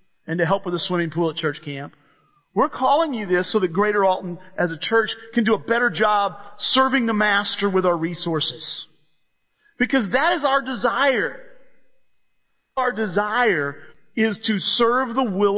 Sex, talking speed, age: male, 170 wpm, 40-59